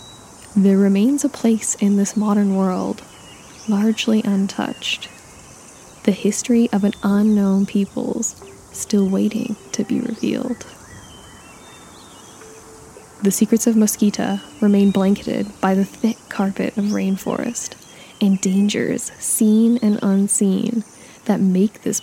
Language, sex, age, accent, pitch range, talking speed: English, female, 10-29, American, 195-220 Hz, 110 wpm